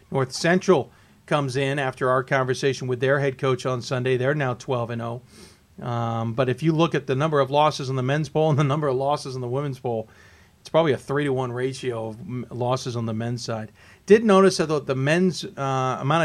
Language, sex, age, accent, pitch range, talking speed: English, male, 40-59, American, 120-160 Hz, 225 wpm